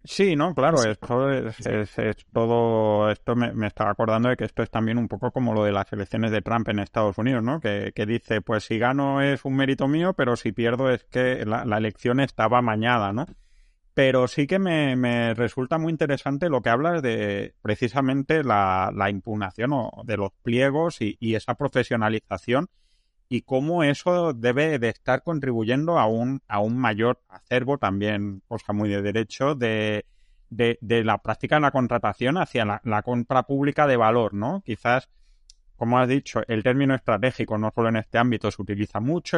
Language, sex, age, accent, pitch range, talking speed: Spanish, male, 30-49, Spanish, 105-130 Hz, 195 wpm